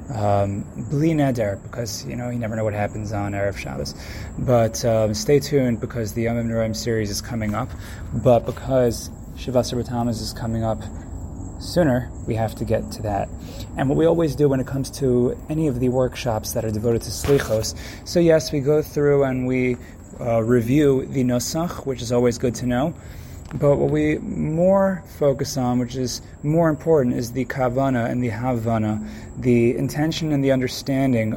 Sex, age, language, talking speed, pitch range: male, 20-39, English, 180 wpm, 115-145 Hz